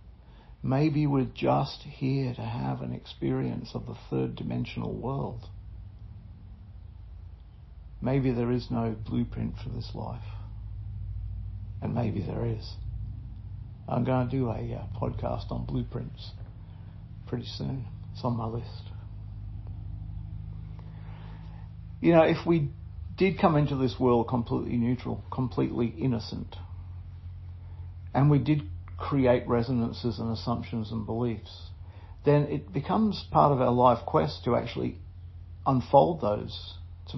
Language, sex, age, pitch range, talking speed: English, male, 50-69, 90-120 Hz, 120 wpm